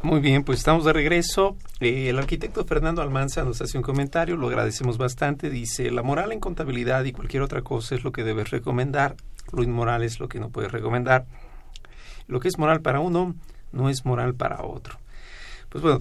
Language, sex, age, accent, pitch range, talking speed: Spanish, male, 50-69, Mexican, 120-145 Hz, 200 wpm